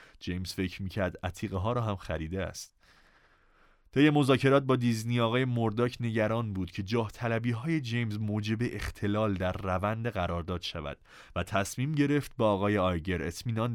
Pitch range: 95-125 Hz